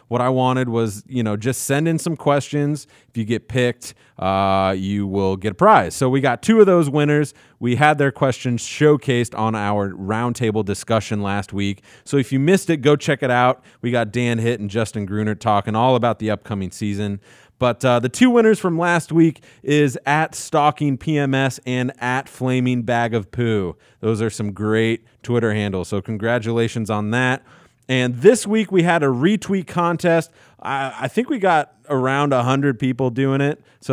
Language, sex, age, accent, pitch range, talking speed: English, male, 30-49, American, 120-150 Hz, 190 wpm